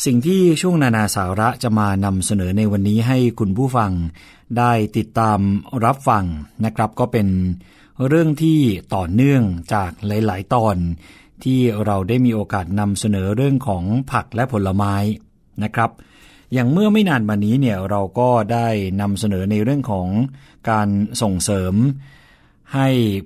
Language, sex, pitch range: Thai, male, 100-125 Hz